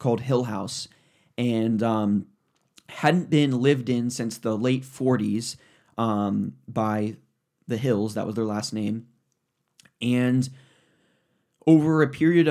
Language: English